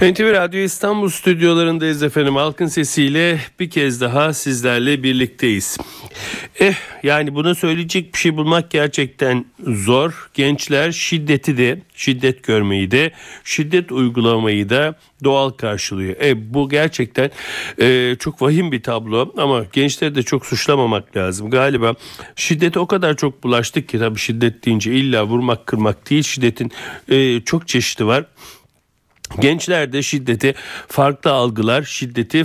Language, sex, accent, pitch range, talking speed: Turkish, male, native, 120-150 Hz, 130 wpm